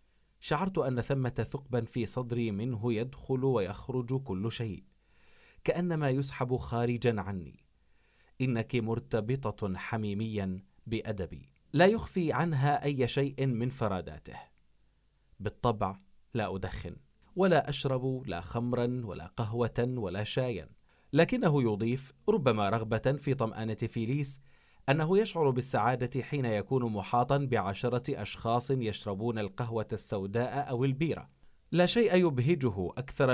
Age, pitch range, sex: 30-49, 105-135 Hz, male